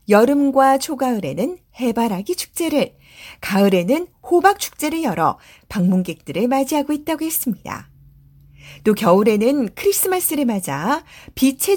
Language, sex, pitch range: Korean, female, 215-315 Hz